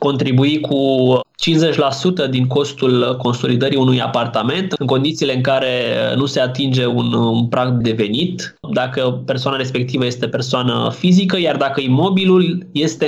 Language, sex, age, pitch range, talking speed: Romanian, male, 20-39, 125-150 Hz, 135 wpm